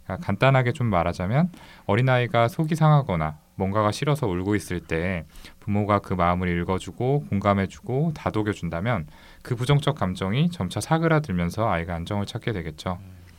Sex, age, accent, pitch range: male, 20-39, native, 90-125 Hz